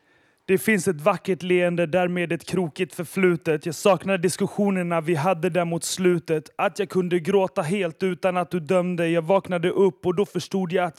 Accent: native